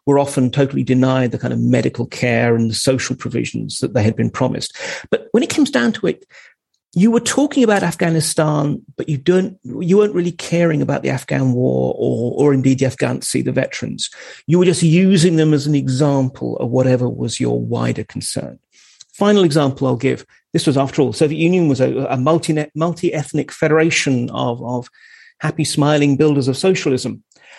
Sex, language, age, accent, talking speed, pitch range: male, English, 40-59, British, 185 wpm, 130-170 Hz